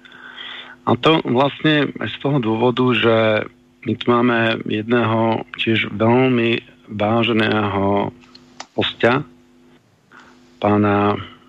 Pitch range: 110-125 Hz